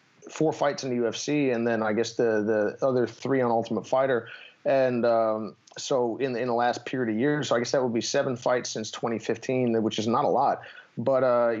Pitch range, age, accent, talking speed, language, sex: 105-125 Hz, 30-49, American, 220 wpm, English, male